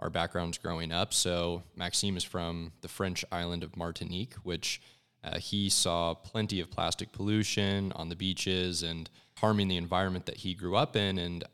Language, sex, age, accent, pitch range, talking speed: English, male, 20-39, American, 85-100 Hz, 175 wpm